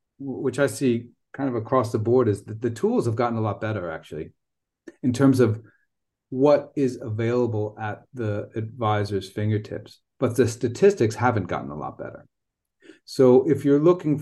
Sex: male